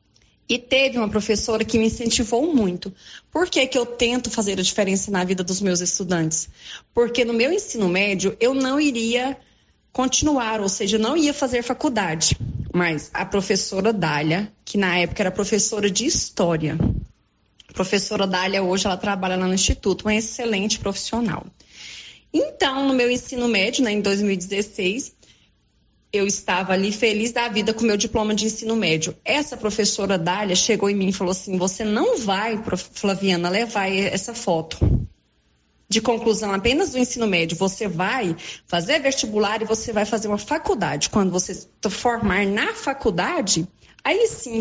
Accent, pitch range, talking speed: Brazilian, 190-235 Hz, 165 wpm